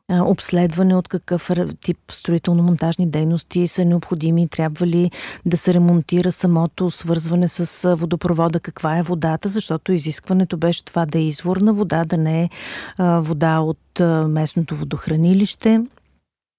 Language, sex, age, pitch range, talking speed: Bulgarian, female, 50-69, 170-195 Hz, 130 wpm